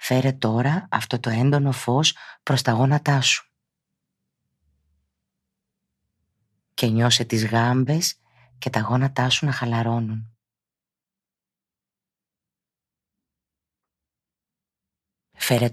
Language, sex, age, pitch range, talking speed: Greek, female, 30-49, 110-125 Hz, 80 wpm